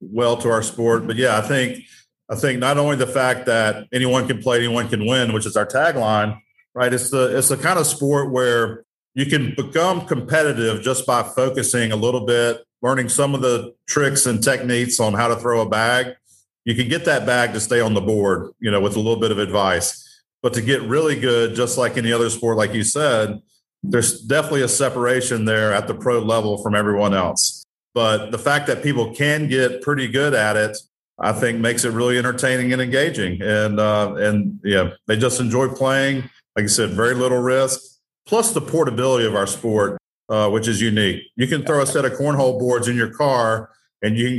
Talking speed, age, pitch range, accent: 210 wpm, 40-59, 110-130 Hz, American